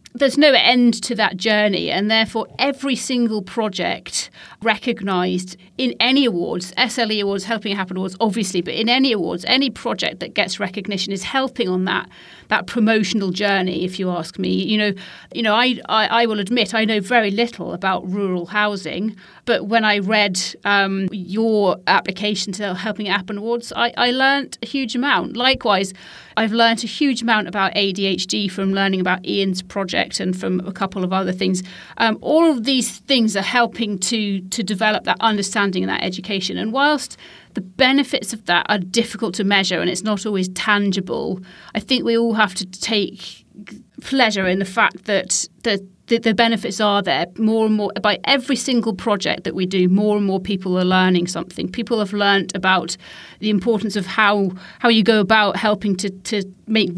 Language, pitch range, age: English, 190-225 Hz, 40-59